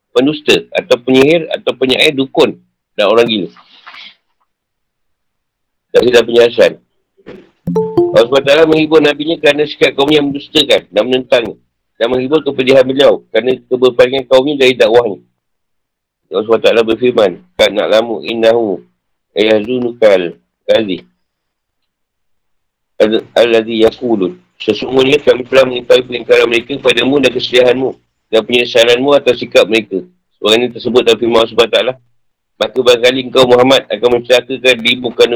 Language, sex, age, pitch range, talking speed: Malay, male, 50-69, 110-140 Hz, 125 wpm